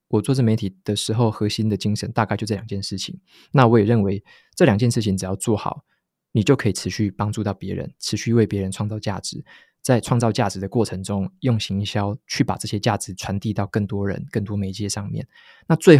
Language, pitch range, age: Chinese, 100-115 Hz, 20-39